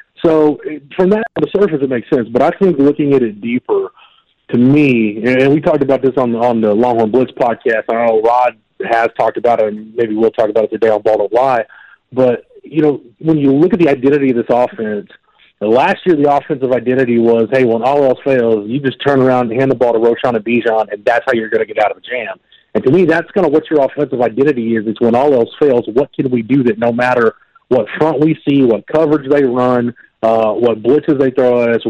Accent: American